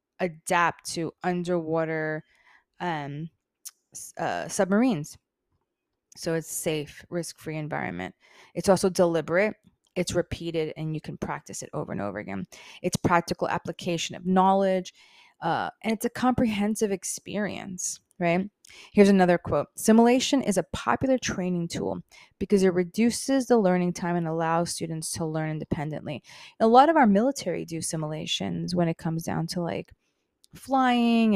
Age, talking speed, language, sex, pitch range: 20-39, 140 wpm, English, female, 165-200 Hz